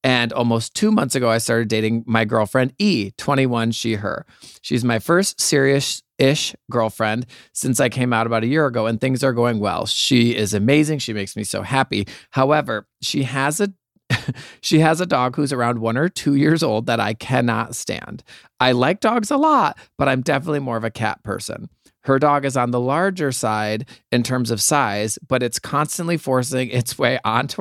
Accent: American